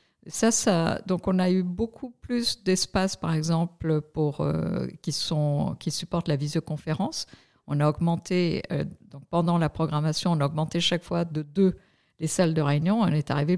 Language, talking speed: French, 180 wpm